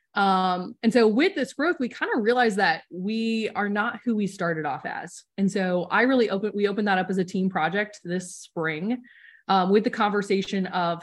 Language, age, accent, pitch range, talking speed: English, 20-39, American, 175-225 Hz, 210 wpm